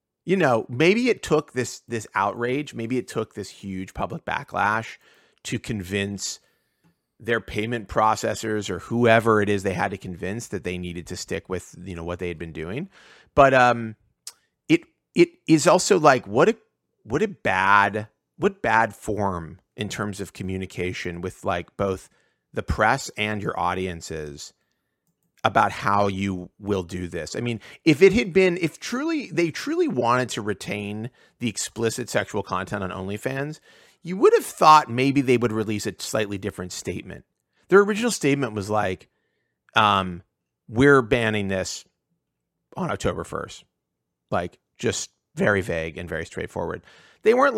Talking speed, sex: 160 wpm, male